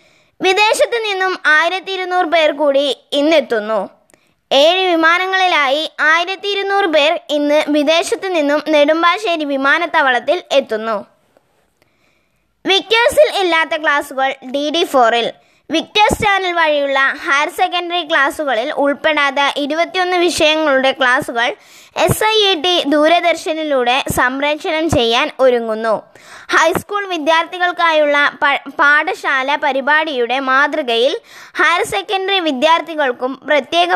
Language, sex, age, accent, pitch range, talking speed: Malayalam, female, 20-39, native, 280-355 Hz, 90 wpm